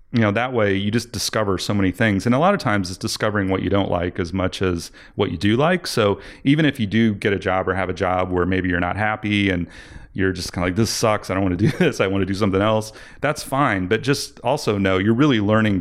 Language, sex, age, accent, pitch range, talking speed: English, male, 30-49, American, 95-115 Hz, 280 wpm